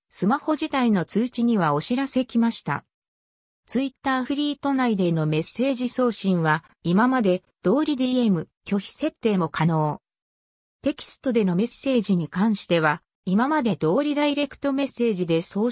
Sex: female